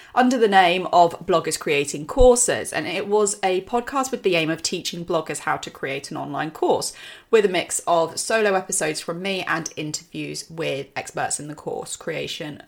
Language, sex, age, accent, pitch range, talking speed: English, female, 30-49, British, 170-230 Hz, 190 wpm